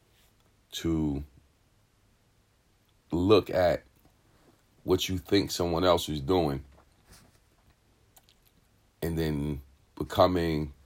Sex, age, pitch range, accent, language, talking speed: male, 40-59, 75-100 Hz, American, English, 70 wpm